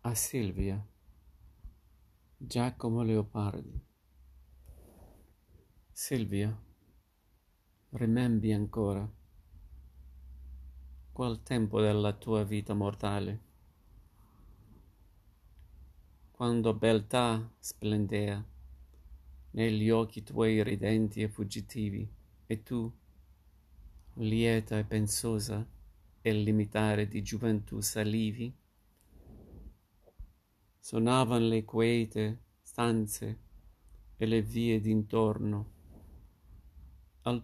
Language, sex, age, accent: Italian, male, 50-69, native